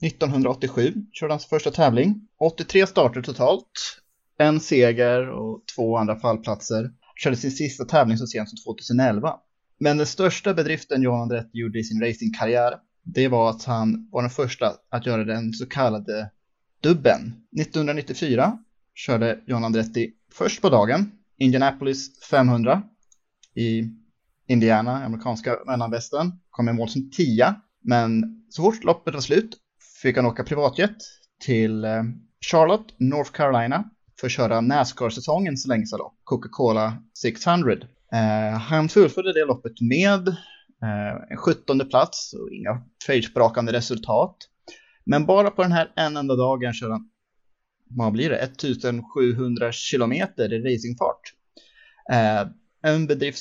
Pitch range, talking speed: 115-155 Hz, 135 wpm